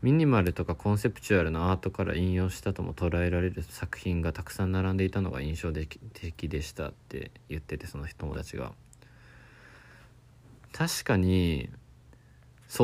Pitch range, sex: 80-115 Hz, male